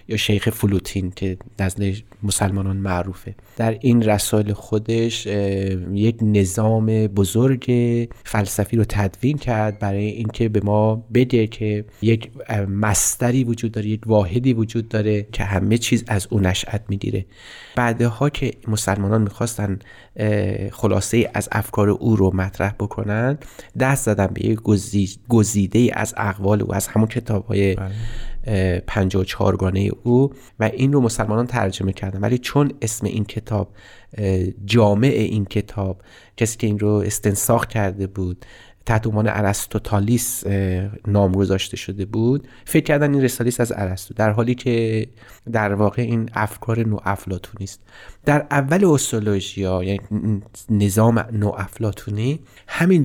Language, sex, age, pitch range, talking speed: Persian, male, 30-49, 100-115 Hz, 130 wpm